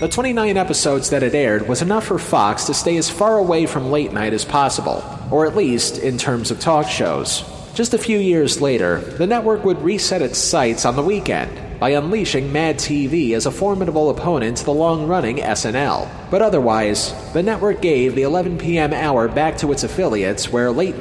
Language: English